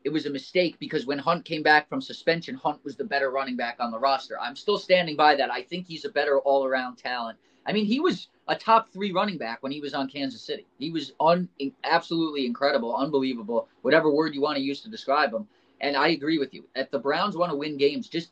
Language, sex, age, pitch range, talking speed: English, male, 30-49, 140-190 Hz, 245 wpm